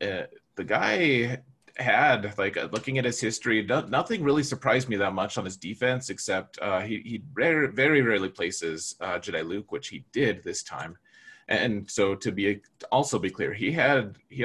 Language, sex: English, male